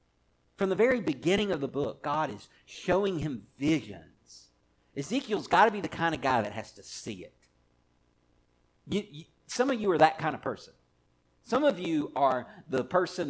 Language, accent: English, American